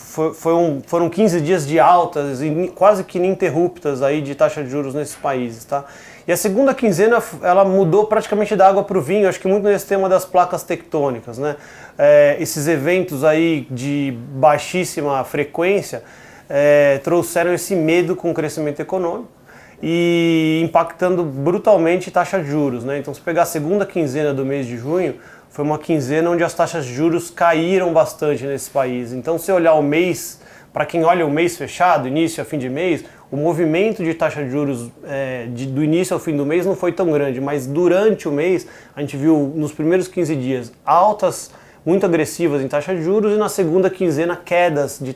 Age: 30-49